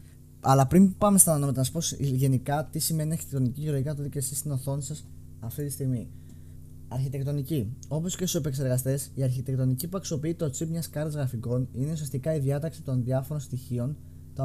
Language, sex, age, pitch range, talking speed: Greek, male, 20-39, 115-150 Hz, 185 wpm